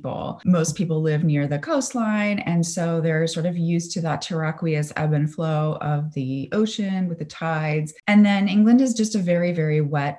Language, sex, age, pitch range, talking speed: English, female, 30-49, 150-180 Hz, 195 wpm